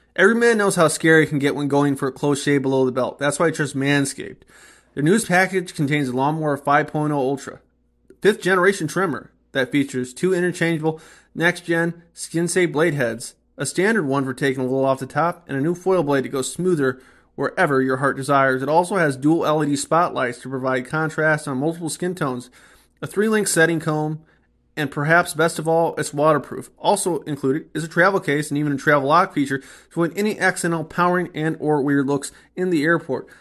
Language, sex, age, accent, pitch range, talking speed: English, male, 30-49, American, 140-170 Hz, 200 wpm